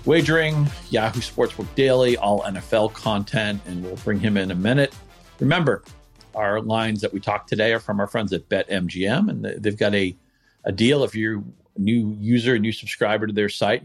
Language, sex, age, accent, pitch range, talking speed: English, male, 50-69, American, 105-150 Hz, 190 wpm